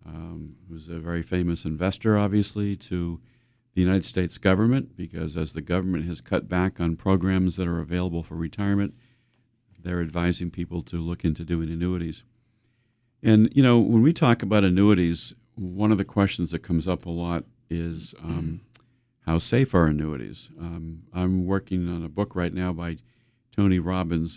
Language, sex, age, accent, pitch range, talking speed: English, male, 50-69, American, 85-110 Hz, 165 wpm